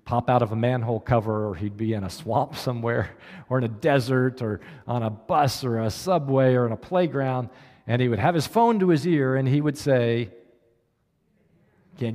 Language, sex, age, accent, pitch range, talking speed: English, male, 50-69, American, 120-175 Hz, 200 wpm